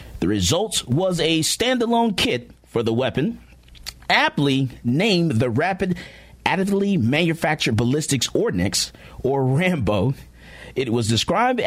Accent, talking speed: American, 115 wpm